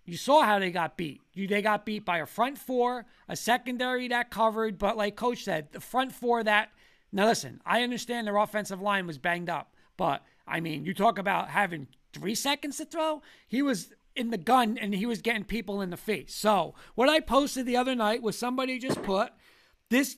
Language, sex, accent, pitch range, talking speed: English, male, American, 200-245 Hz, 210 wpm